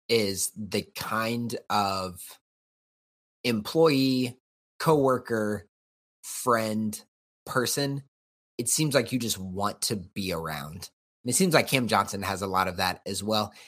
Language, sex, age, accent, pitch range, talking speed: English, male, 30-49, American, 100-130 Hz, 130 wpm